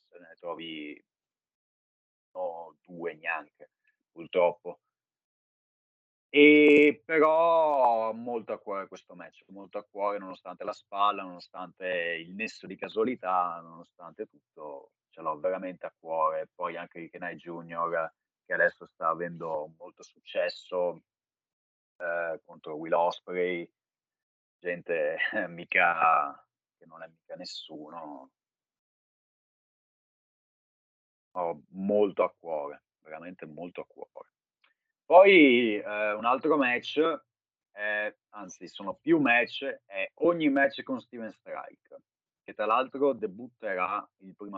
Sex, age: male, 30-49